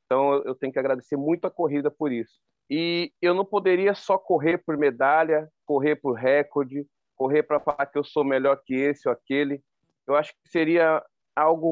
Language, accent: Portuguese, Brazilian